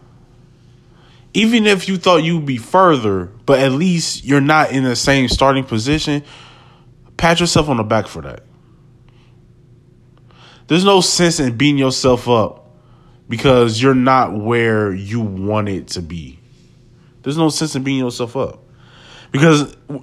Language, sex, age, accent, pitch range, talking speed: English, male, 20-39, American, 120-155 Hz, 145 wpm